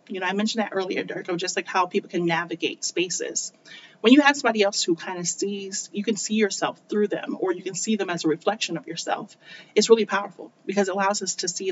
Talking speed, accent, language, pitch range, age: 250 wpm, American, English, 175-215 Hz, 30-49